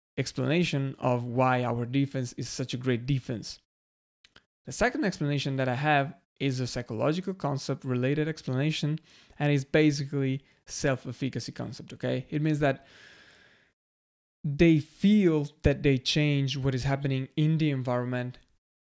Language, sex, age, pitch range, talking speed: English, male, 20-39, 130-155 Hz, 135 wpm